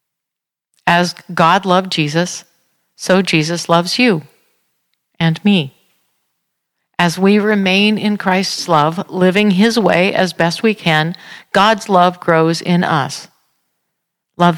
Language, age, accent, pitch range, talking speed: English, 50-69, American, 160-200 Hz, 120 wpm